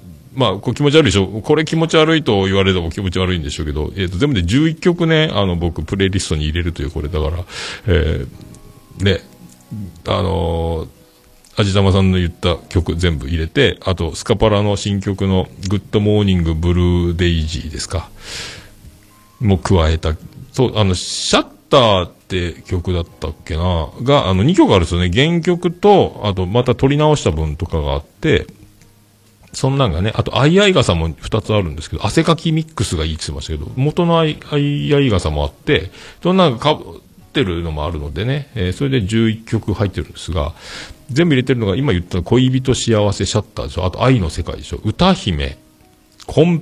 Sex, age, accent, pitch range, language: male, 40-59, native, 85-120 Hz, Japanese